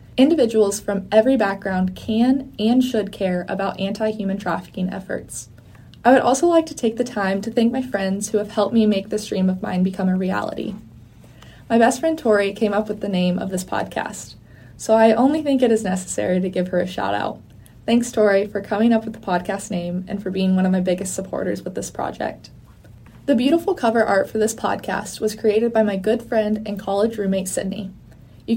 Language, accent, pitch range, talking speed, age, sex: English, American, 190-230 Hz, 210 wpm, 20-39, female